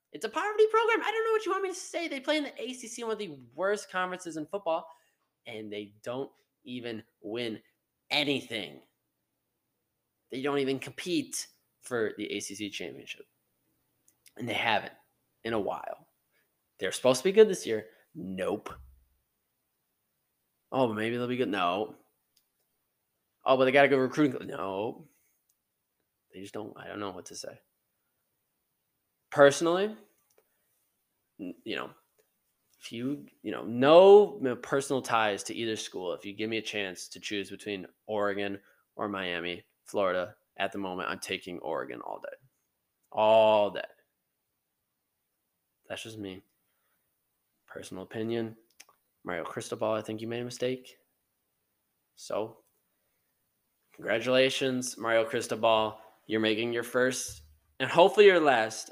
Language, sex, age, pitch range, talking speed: English, male, 20-39, 105-150 Hz, 140 wpm